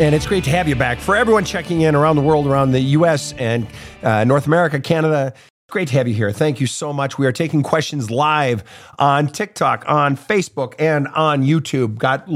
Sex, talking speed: male, 215 wpm